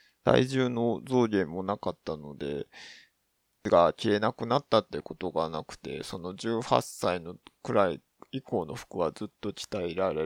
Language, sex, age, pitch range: Japanese, male, 20-39, 95-120 Hz